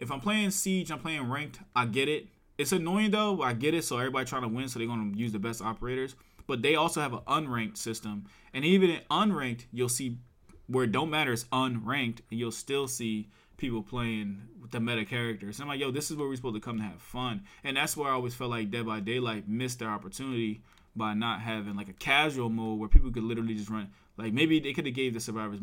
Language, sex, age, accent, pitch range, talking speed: English, male, 20-39, American, 105-125 Hz, 245 wpm